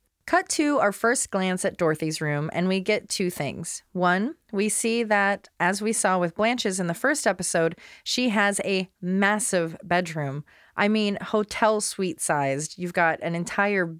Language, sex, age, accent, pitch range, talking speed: English, female, 30-49, American, 165-210 Hz, 165 wpm